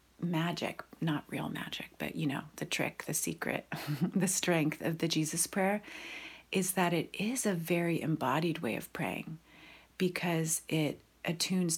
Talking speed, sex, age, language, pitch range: 155 wpm, female, 30-49, English, 150-180 Hz